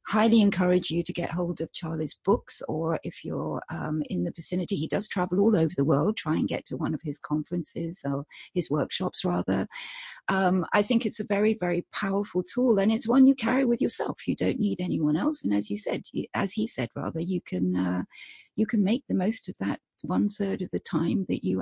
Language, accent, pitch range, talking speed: English, British, 160-220 Hz, 225 wpm